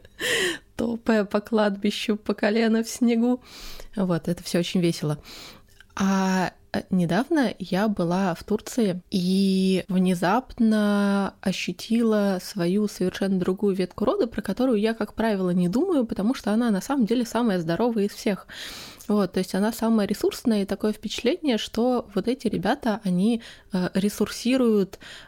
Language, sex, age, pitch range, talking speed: Russian, female, 20-39, 185-220 Hz, 140 wpm